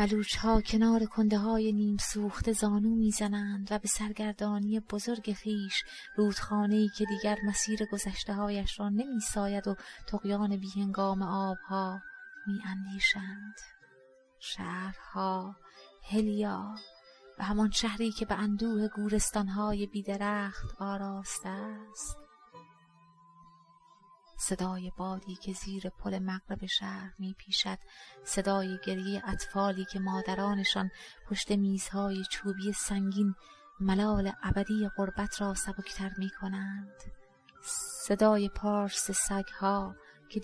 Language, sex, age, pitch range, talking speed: Persian, female, 30-49, 195-210 Hz, 100 wpm